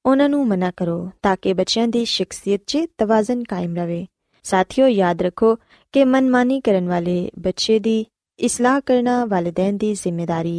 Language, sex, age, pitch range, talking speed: Punjabi, female, 20-39, 190-255 Hz, 155 wpm